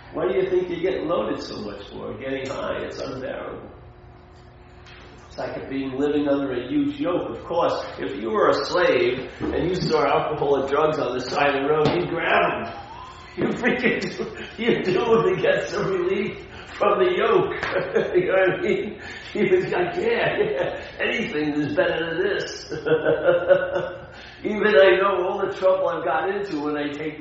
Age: 40-59